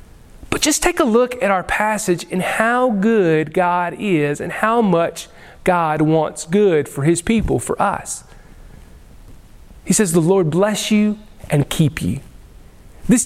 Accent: American